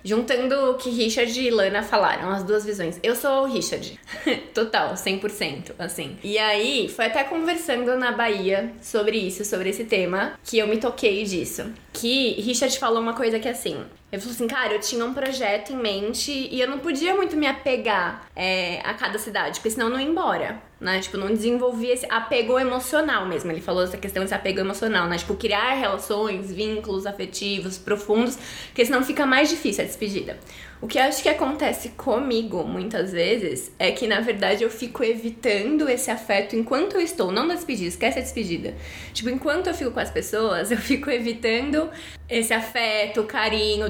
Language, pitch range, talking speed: Portuguese, 205-270 Hz, 190 wpm